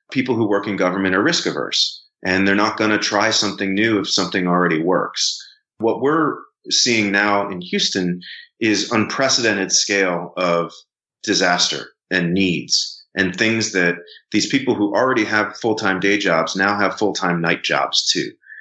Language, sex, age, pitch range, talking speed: English, male, 30-49, 90-105 Hz, 160 wpm